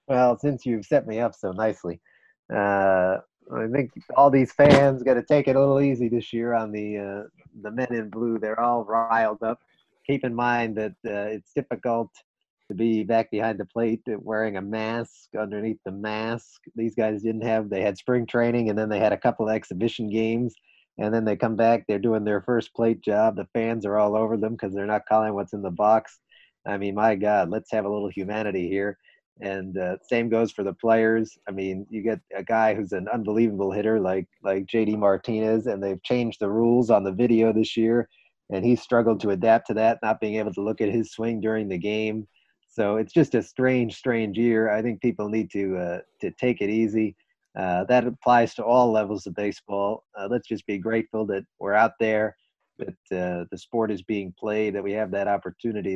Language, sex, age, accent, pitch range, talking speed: English, male, 30-49, American, 100-115 Hz, 215 wpm